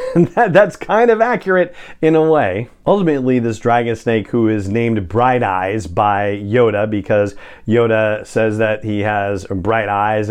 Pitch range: 105-125 Hz